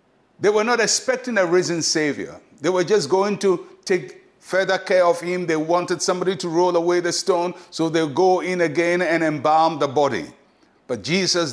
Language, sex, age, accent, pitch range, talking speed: English, male, 60-79, Nigerian, 145-190 Hz, 185 wpm